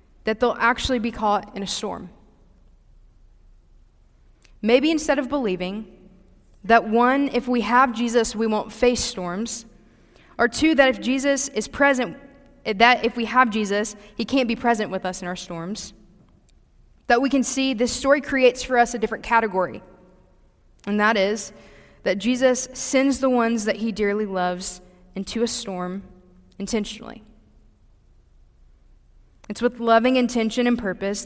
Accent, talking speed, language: American, 150 wpm, English